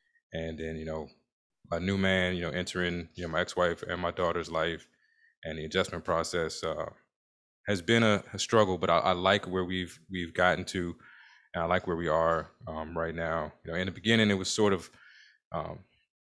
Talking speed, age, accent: 210 wpm, 20-39, American